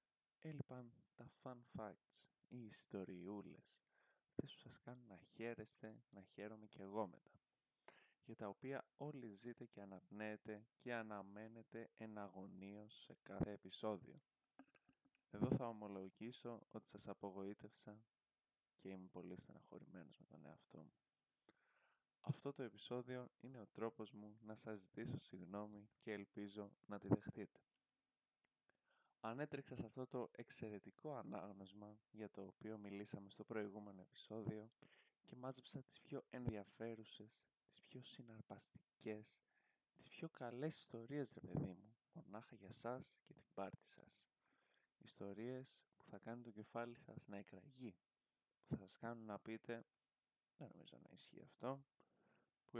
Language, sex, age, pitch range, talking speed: Greek, male, 20-39, 100-120 Hz, 130 wpm